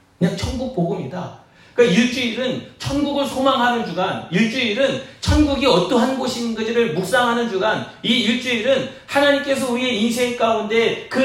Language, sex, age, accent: Korean, male, 40-59, native